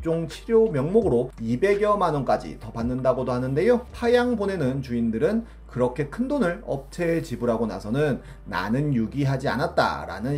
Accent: native